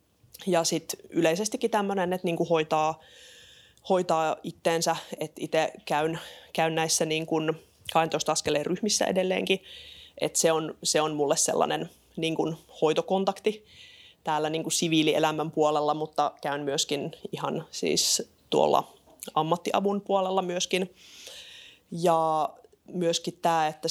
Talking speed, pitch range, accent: 115 wpm, 150-175 Hz, native